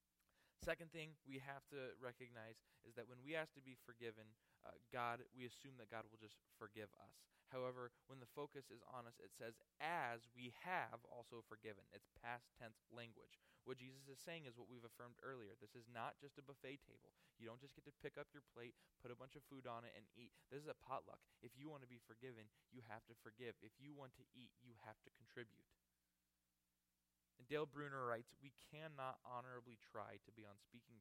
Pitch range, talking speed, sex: 100-130 Hz, 215 wpm, male